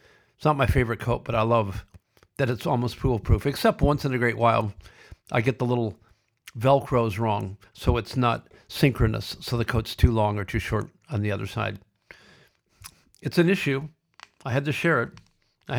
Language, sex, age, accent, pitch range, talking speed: English, male, 50-69, American, 105-140 Hz, 185 wpm